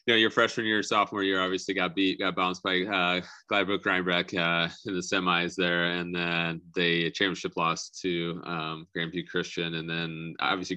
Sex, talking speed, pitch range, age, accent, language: male, 180 wpm, 85-90 Hz, 20-39, American, English